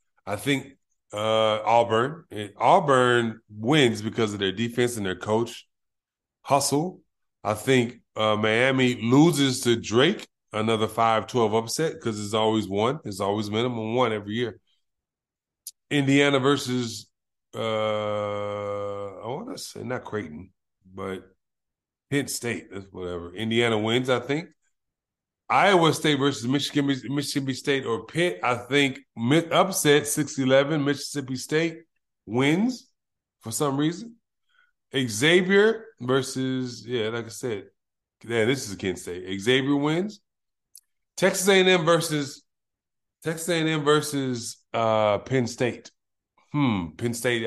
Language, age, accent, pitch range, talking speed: English, 30-49, American, 110-145 Hz, 120 wpm